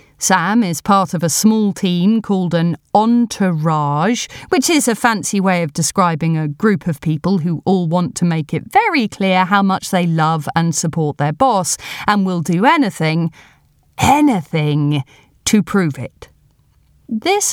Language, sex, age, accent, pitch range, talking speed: English, female, 40-59, British, 170-260 Hz, 155 wpm